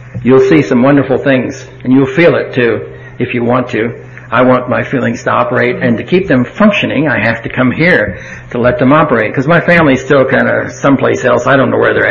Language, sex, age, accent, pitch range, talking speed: English, male, 60-79, American, 125-160 Hz, 235 wpm